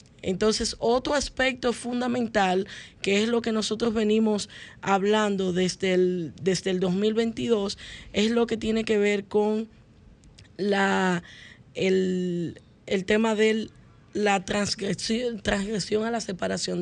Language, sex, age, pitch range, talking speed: Spanish, female, 10-29, 190-230 Hz, 120 wpm